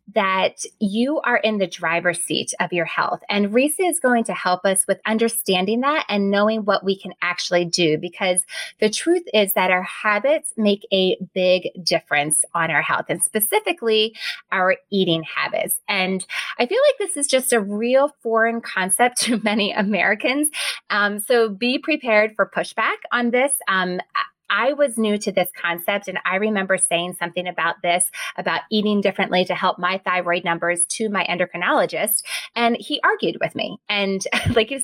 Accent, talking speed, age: American, 175 wpm, 20-39